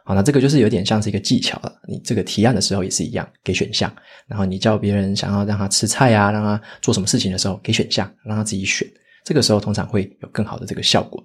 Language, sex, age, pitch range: Chinese, male, 20-39, 100-125 Hz